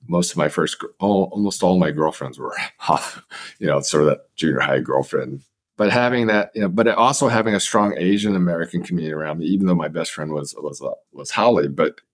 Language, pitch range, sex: English, 90-115 Hz, male